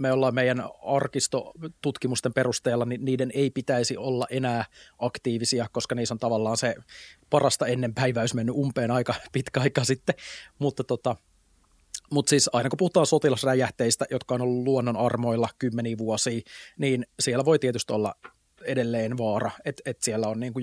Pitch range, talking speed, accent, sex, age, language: 120-140 Hz, 155 wpm, native, male, 30-49, Finnish